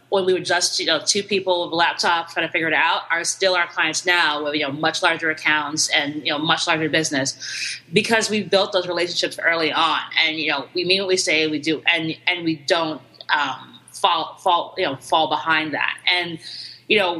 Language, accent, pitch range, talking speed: English, American, 155-180 Hz, 225 wpm